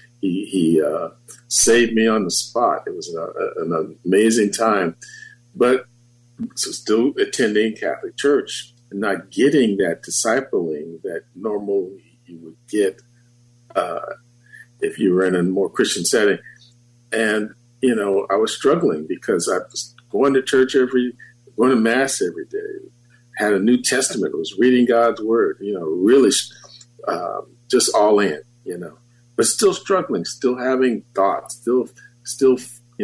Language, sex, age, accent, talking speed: English, male, 50-69, American, 155 wpm